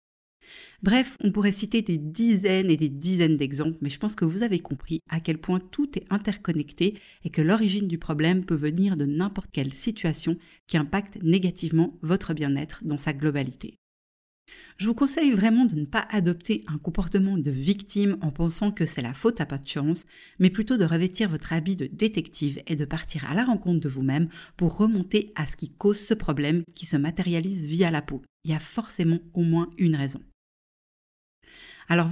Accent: French